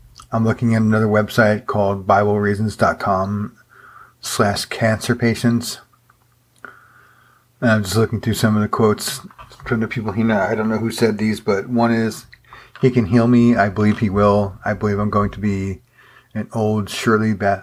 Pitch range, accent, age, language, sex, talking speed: 110-120 Hz, American, 40-59, English, male, 170 wpm